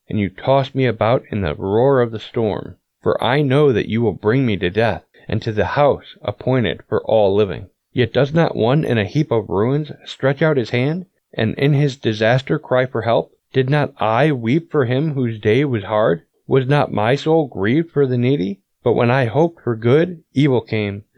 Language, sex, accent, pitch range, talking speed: English, male, American, 105-140 Hz, 215 wpm